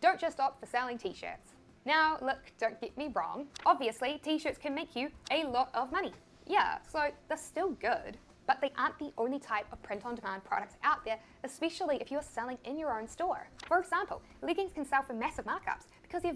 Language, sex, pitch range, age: English, female, 240-315 Hz, 10-29